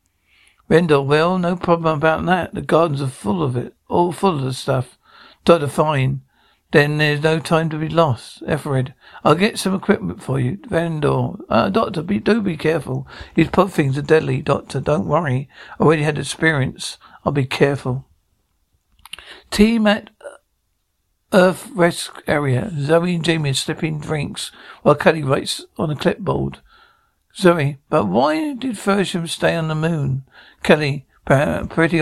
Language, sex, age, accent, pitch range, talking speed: English, male, 60-79, British, 135-170 Hz, 155 wpm